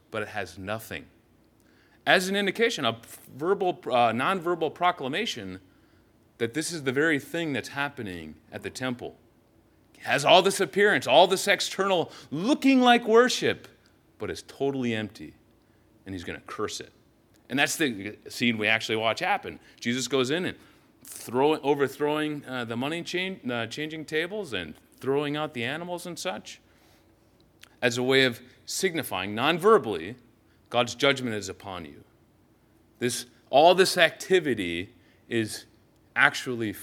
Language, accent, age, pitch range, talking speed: English, American, 30-49, 110-165 Hz, 140 wpm